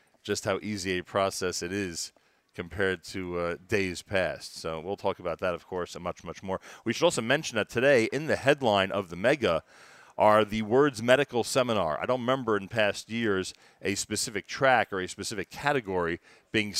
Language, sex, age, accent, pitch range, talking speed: English, male, 40-59, American, 100-125 Hz, 195 wpm